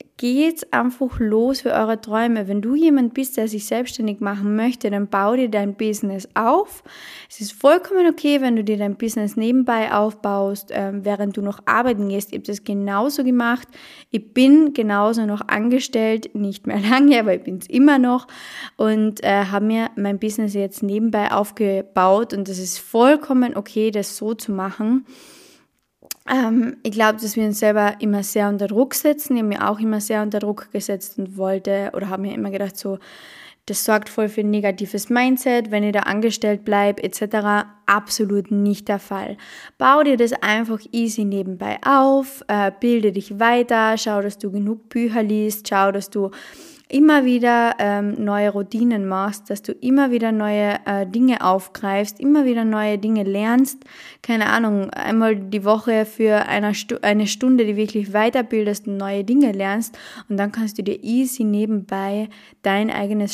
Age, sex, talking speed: 20-39, female, 175 wpm